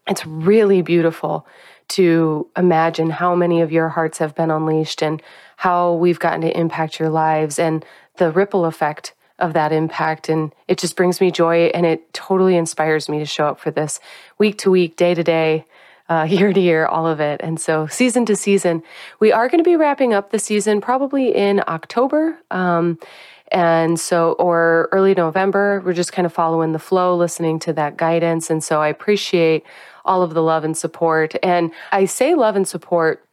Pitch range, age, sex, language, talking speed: 160-200 Hz, 30-49, female, English, 195 wpm